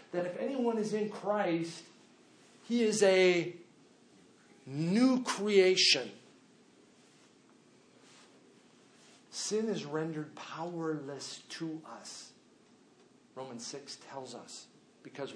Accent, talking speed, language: American, 85 wpm, English